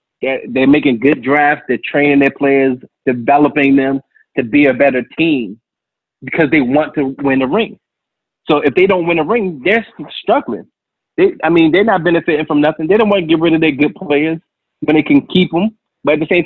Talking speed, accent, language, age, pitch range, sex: 210 wpm, American, English, 20-39, 145-220 Hz, male